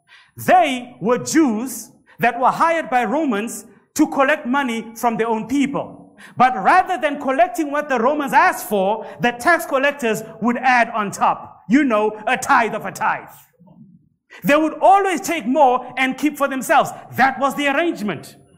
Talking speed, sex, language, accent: 165 wpm, male, English, South African